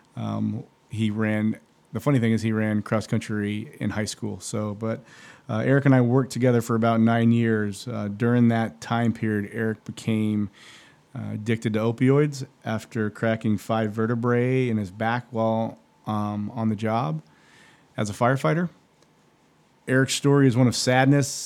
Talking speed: 160 wpm